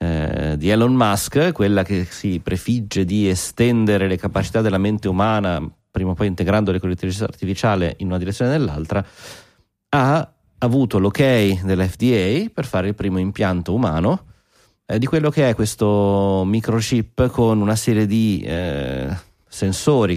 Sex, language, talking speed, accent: male, Italian, 145 wpm, native